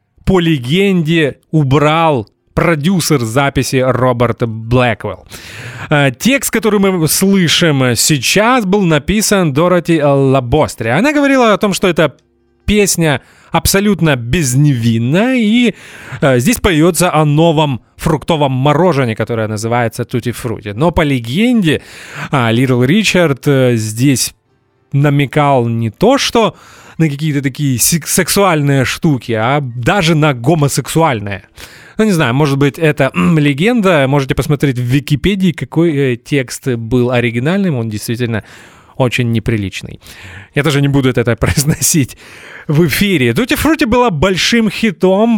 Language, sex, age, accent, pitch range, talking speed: Russian, male, 20-39, native, 125-175 Hz, 115 wpm